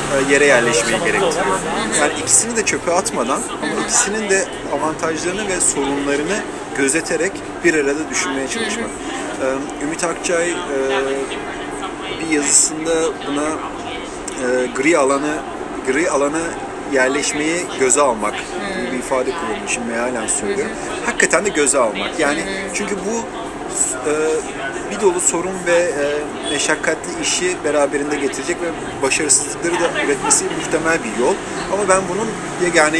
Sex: male